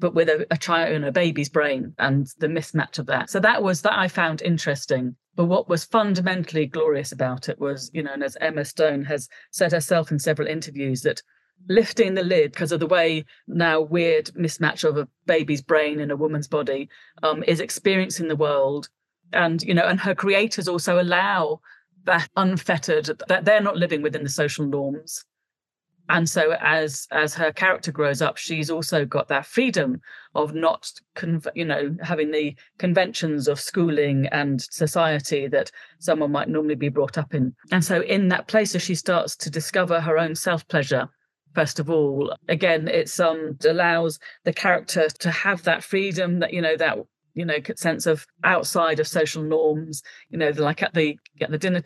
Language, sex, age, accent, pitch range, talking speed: English, female, 40-59, British, 150-180 Hz, 190 wpm